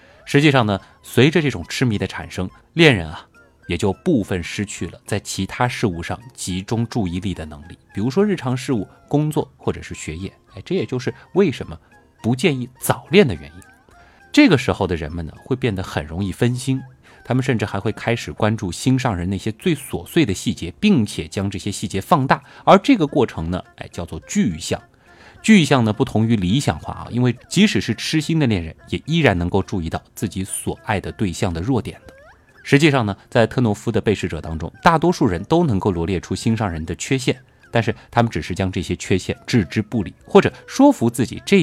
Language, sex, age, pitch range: Chinese, male, 20-39, 95-160 Hz